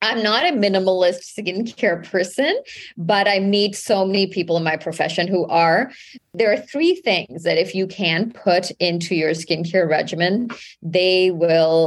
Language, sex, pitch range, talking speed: English, female, 165-195 Hz, 160 wpm